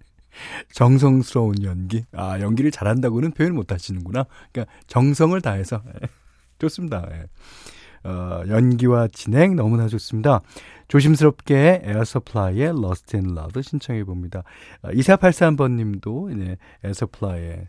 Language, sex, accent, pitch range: Korean, male, native, 100-155 Hz